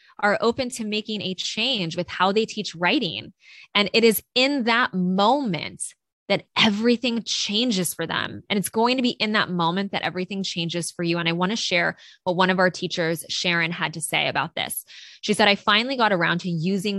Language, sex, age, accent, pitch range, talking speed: English, female, 20-39, American, 170-210 Hz, 210 wpm